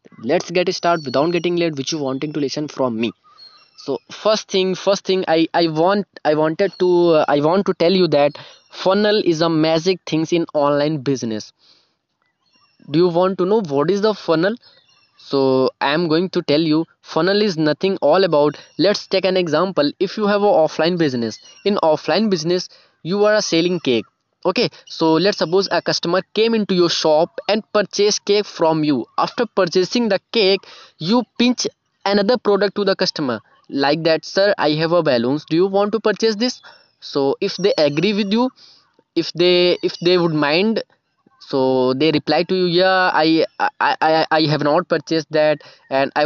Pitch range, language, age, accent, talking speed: 155-210 Hz, Hindi, 20-39, native, 190 wpm